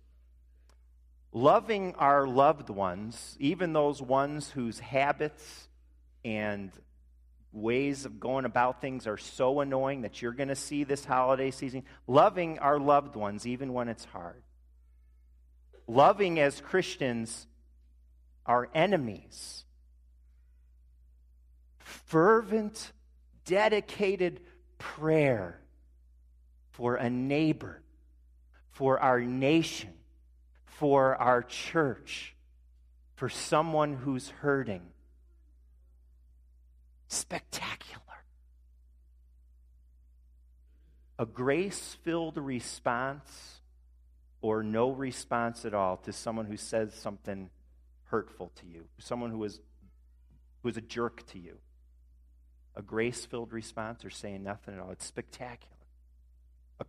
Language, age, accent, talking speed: English, 40-59, American, 100 wpm